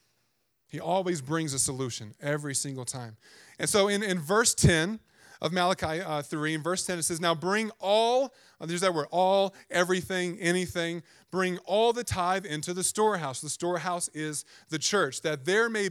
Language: English